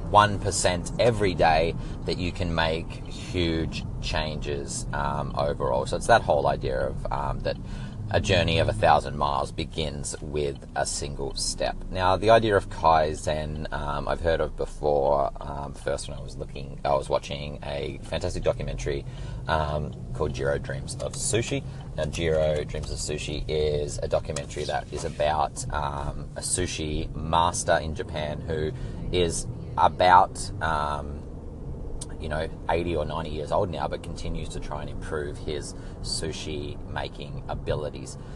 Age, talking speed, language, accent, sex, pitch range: 30-49, 145 wpm, English, Australian, male, 75-100 Hz